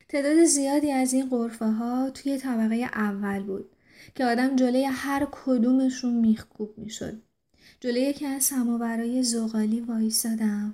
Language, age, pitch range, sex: Persian, 30-49, 220-250 Hz, female